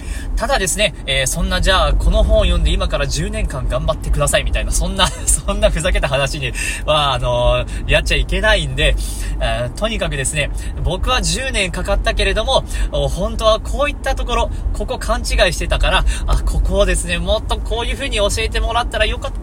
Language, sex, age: Japanese, male, 20-39